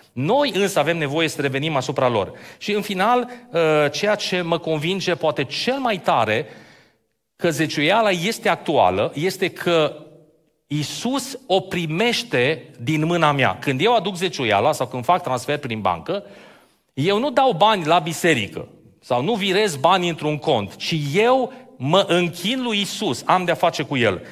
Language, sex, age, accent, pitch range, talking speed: Romanian, male, 30-49, native, 140-190 Hz, 160 wpm